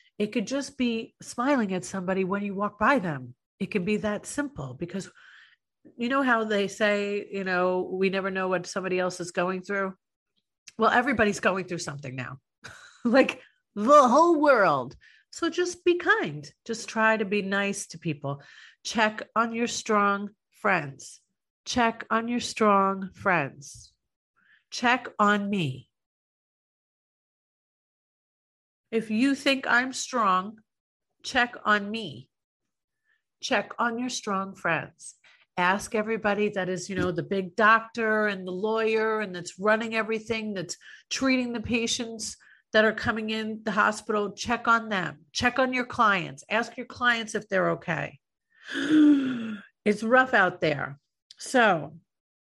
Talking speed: 145 wpm